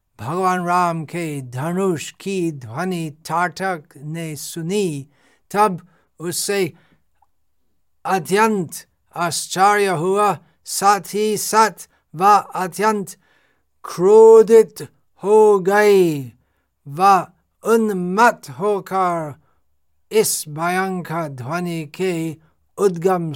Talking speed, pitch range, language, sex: 75 wpm, 150-195 Hz, Hindi, male